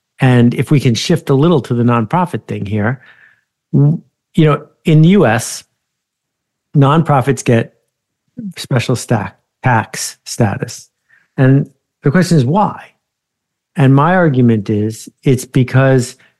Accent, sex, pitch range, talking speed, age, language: American, male, 125-150 Hz, 125 wpm, 60-79, English